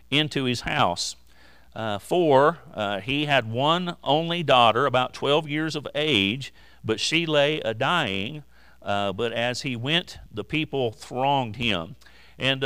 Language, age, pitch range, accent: English, 50-69, 115-145 Hz, American